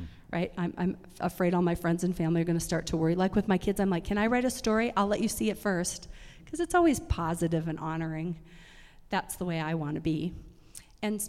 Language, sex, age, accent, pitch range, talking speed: English, female, 40-59, American, 160-200 Hz, 245 wpm